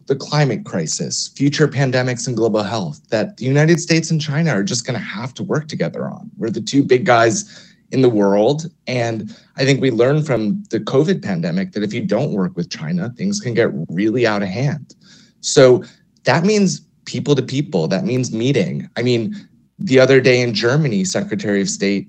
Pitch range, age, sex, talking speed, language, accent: 115-165 Hz, 30-49, male, 200 wpm, English, American